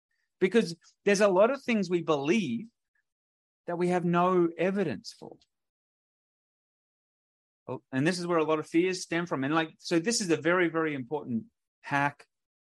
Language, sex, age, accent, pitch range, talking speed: English, male, 30-49, Australian, 130-175 Hz, 160 wpm